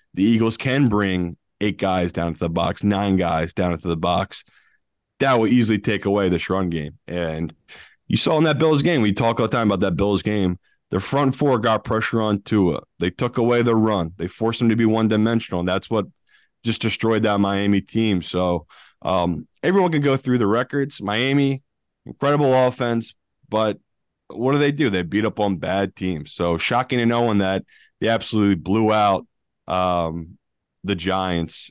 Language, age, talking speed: English, 20-39, 190 wpm